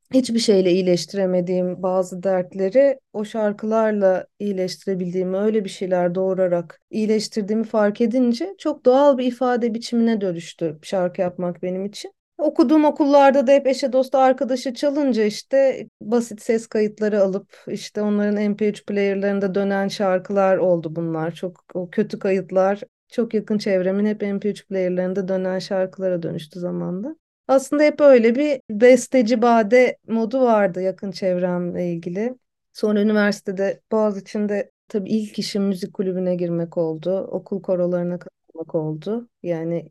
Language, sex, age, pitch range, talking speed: Turkish, female, 30-49, 185-230 Hz, 130 wpm